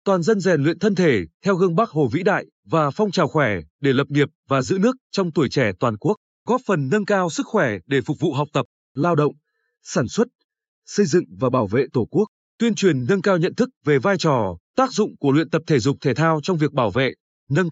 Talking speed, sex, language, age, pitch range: 245 wpm, male, Vietnamese, 20-39, 140-195 Hz